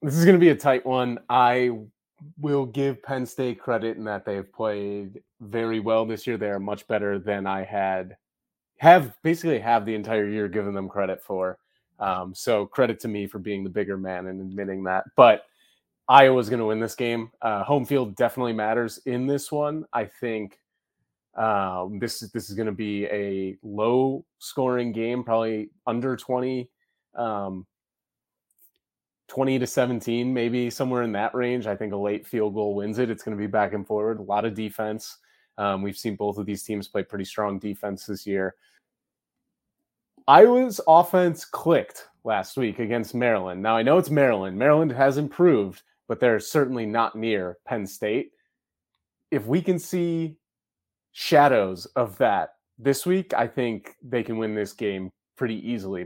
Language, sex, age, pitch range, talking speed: English, male, 30-49, 100-125 Hz, 180 wpm